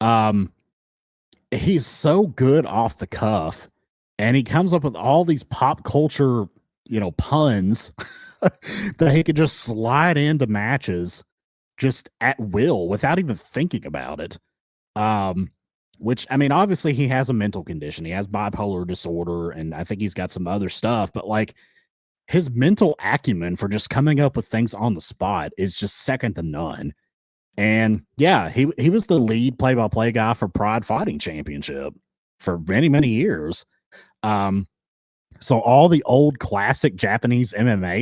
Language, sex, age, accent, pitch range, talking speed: English, male, 30-49, American, 100-135 Hz, 160 wpm